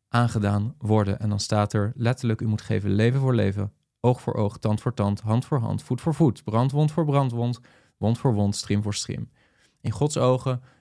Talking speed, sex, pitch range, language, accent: 205 wpm, male, 105-125 Hz, Dutch, Dutch